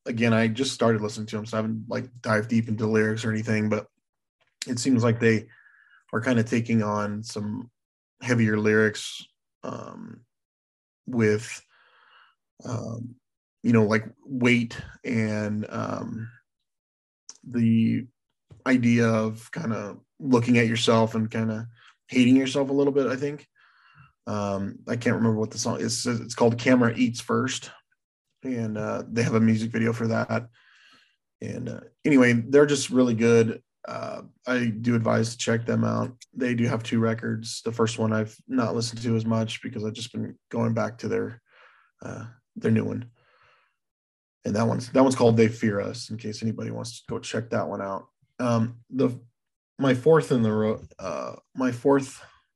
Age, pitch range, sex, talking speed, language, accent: 20-39, 110-125 Hz, male, 170 wpm, English, American